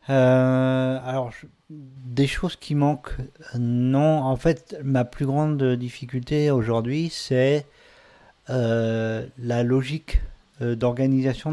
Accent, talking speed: French, 110 wpm